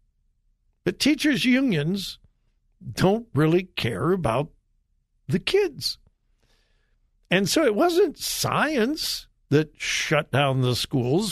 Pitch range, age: 135-200 Hz, 60-79